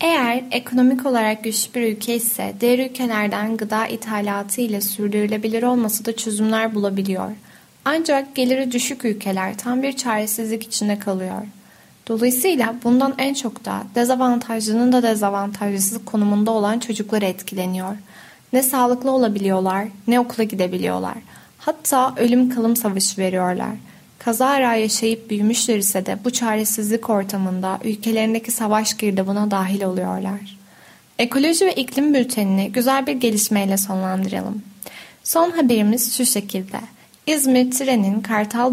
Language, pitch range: Turkish, 200-240 Hz